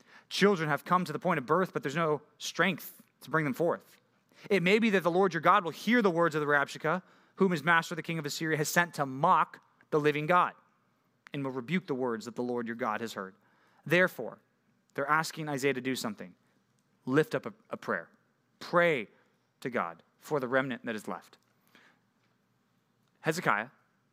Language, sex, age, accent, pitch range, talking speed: English, male, 30-49, American, 135-180 Hz, 195 wpm